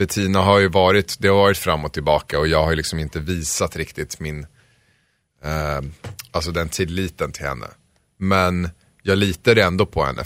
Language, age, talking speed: Swedish, 30-49, 175 wpm